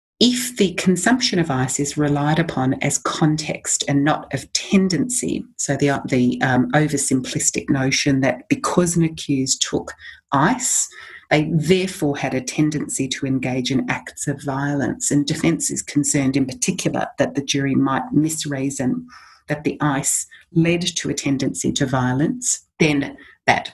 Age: 40-59